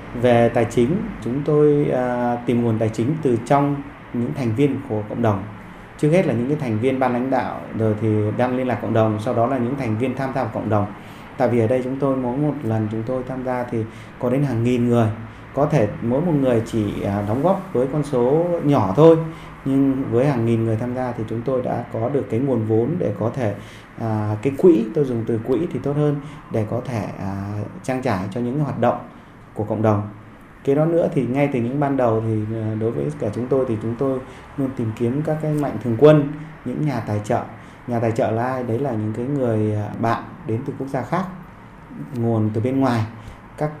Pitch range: 110-140 Hz